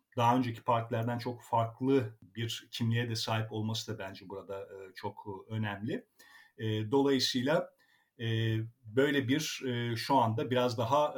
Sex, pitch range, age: male, 110-130 Hz, 50-69